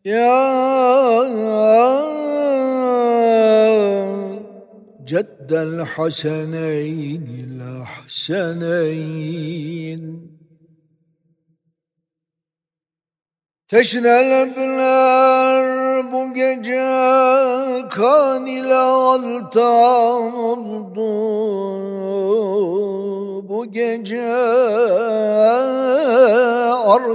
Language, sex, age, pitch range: Turkish, male, 50-69, 195-255 Hz